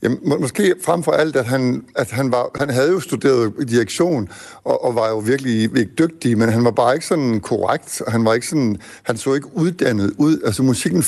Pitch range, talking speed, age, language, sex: 110-145 Hz, 230 wpm, 60-79, Danish, male